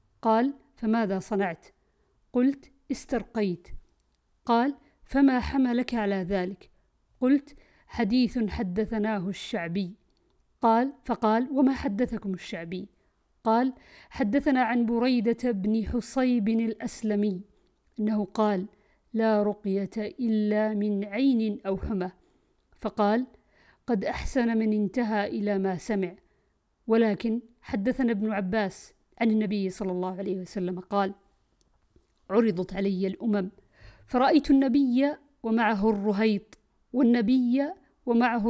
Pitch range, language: 205-240 Hz, Arabic